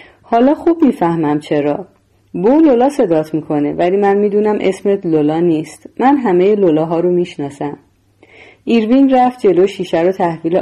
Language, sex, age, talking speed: Persian, female, 30-49, 145 wpm